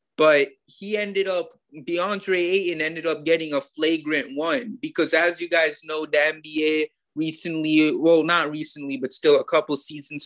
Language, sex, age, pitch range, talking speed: English, male, 20-39, 145-180 Hz, 165 wpm